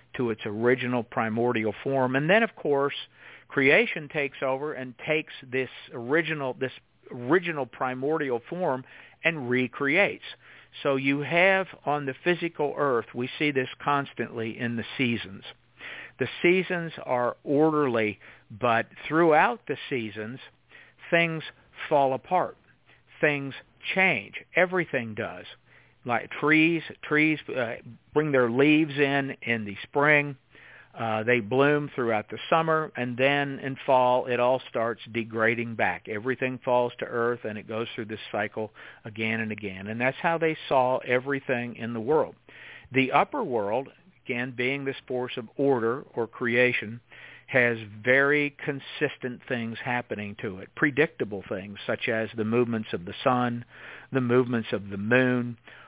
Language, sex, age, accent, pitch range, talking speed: English, male, 50-69, American, 115-145 Hz, 140 wpm